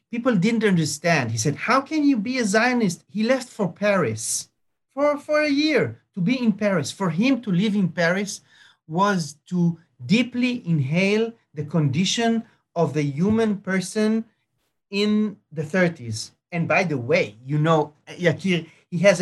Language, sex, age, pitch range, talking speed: English, male, 40-59, 150-210 Hz, 155 wpm